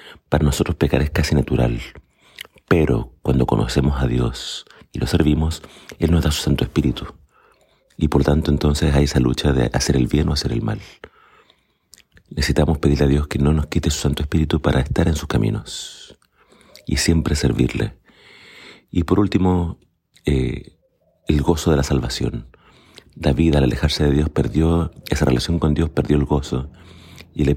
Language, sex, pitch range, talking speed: Spanish, male, 70-80 Hz, 170 wpm